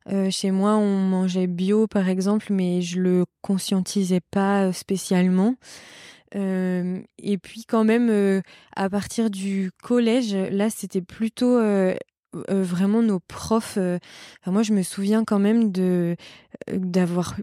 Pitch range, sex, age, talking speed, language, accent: 185-215 Hz, female, 20-39, 150 wpm, French, French